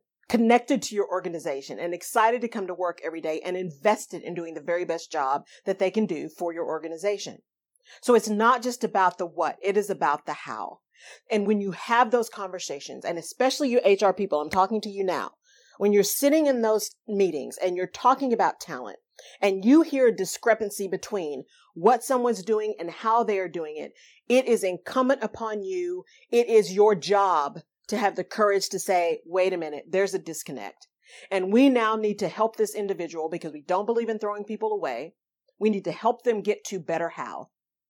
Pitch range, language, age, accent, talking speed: 180-225 Hz, English, 40-59, American, 200 wpm